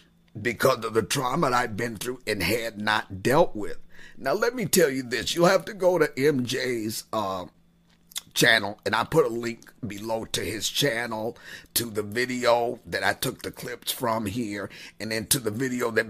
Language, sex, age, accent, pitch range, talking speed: English, male, 50-69, American, 105-135 Hz, 195 wpm